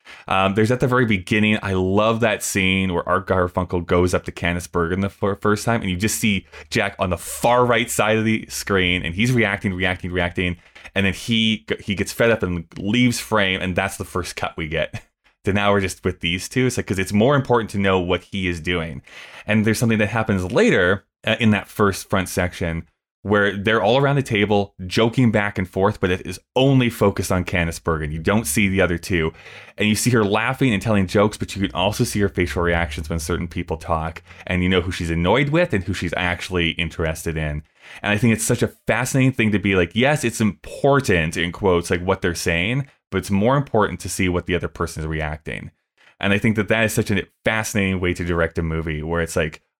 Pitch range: 85-110 Hz